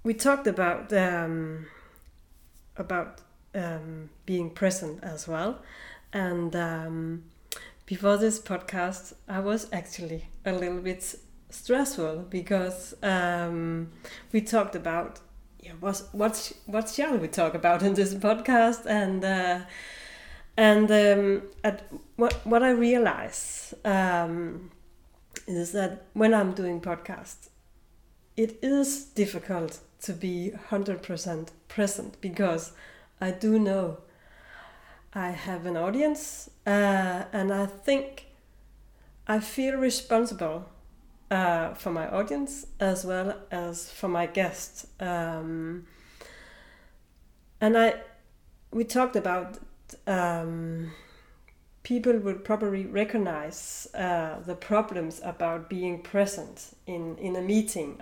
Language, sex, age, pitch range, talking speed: Danish, female, 30-49, 170-215 Hz, 115 wpm